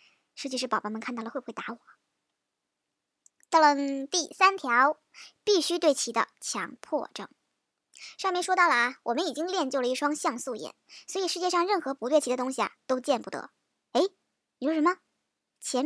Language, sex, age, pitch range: Chinese, male, 20-39, 265-370 Hz